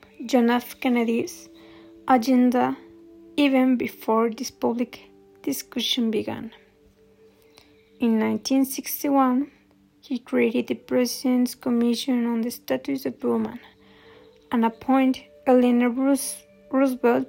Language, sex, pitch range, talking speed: English, female, 225-260 Hz, 90 wpm